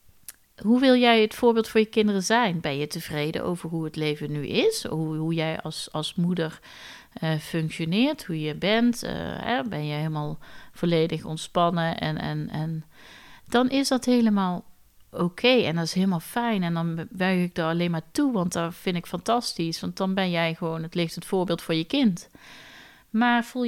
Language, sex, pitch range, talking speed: Dutch, female, 155-210 Hz, 195 wpm